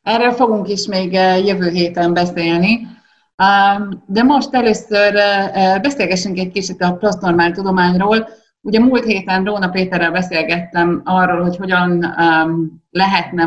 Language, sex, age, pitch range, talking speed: Hungarian, female, 30-49, 145-190 Hz, 115 wpm